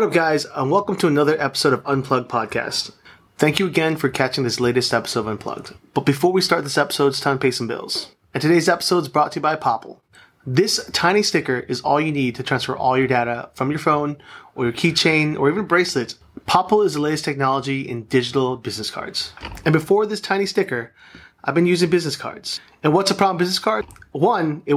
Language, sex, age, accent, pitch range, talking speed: English, male, 30-49, American, 130-170 Hz, 220 wpm